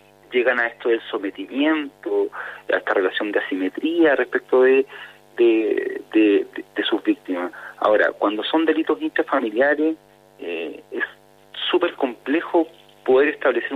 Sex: male